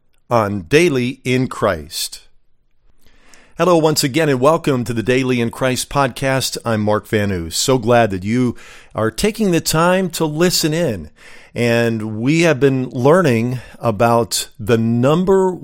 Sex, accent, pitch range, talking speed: male, American, 110-155 Hz, 140 wpm